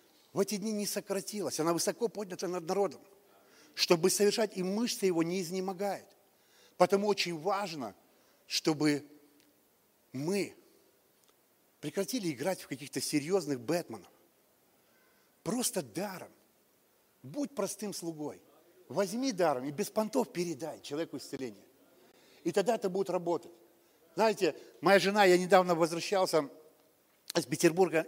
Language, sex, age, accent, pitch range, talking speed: Russian, male, 50-69, native, 155-190 Hz, 115 wpm